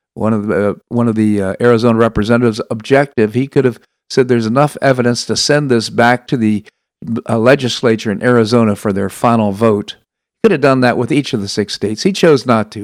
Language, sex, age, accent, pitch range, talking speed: English, male, 50-69, American, 105-135 Hz, 210 wpm